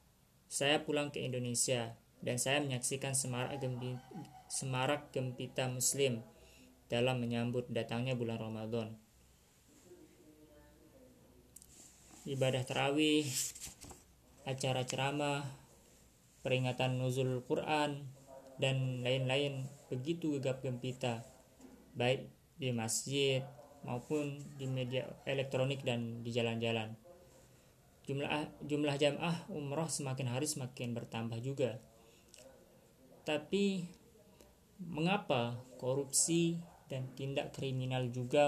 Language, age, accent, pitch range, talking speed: Indonesian, 20-39, native, 120-145 Hz, 85 wpm